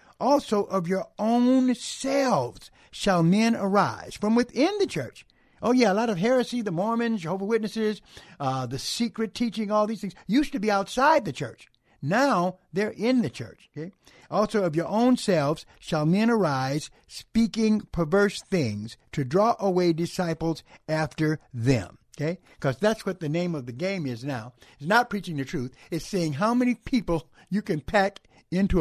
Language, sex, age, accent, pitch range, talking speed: English, male, 60-79, American, 145-215 Hz, 175 wpm